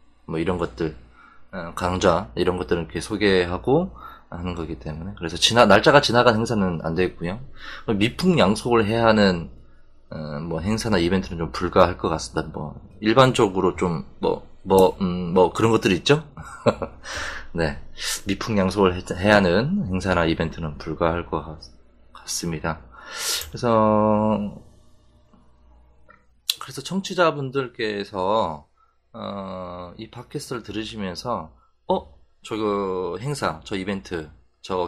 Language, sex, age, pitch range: Korean, male, 20-39, 85-115 Hz